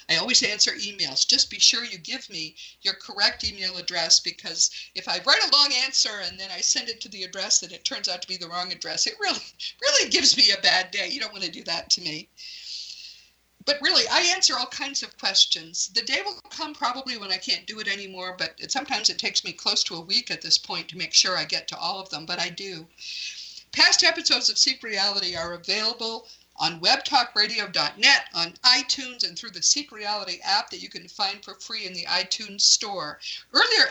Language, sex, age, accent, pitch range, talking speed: English, female, 50-69, American, 180-260 Hz, 220 wpm